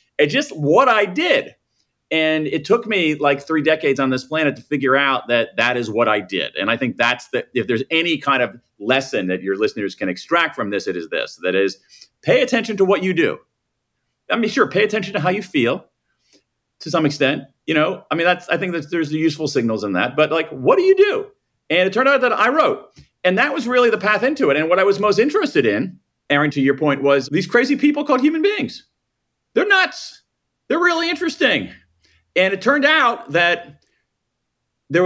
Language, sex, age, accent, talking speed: English, male, 40-59, American, 220 wpm